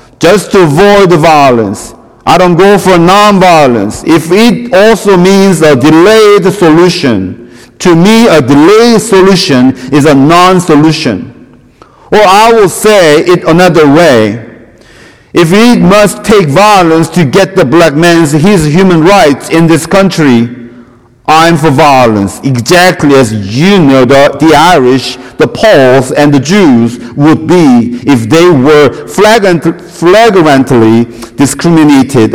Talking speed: 130 wpm